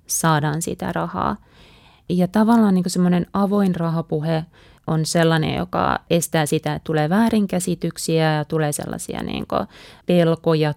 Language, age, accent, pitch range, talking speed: Finnish, 30-49, native, 155-180 Hz, 110 wpm